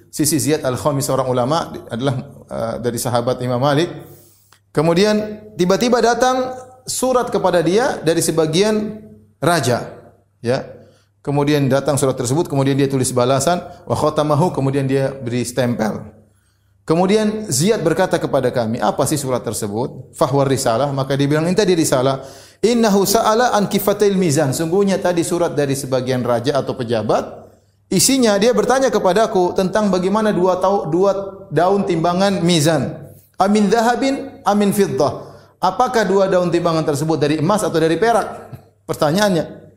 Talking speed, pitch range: 135 wpm, 130-190 Hz